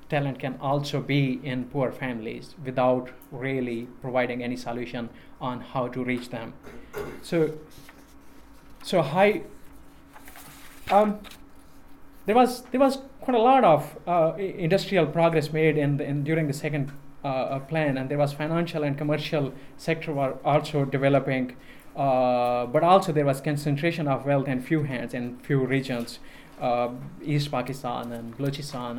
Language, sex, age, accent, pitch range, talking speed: English, male, 20-39, Indian, 130-160 Hz, 145 wpm